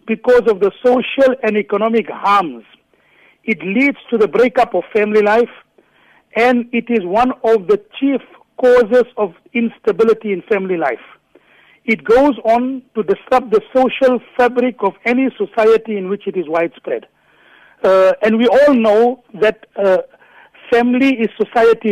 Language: English